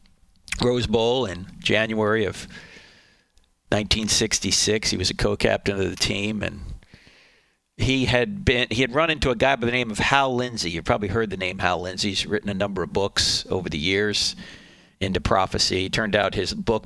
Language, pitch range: English, 105-145 Hz